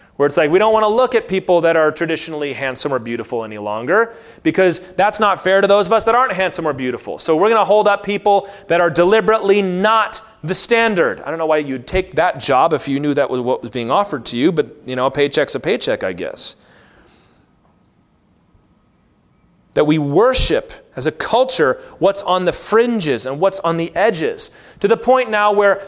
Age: 30-49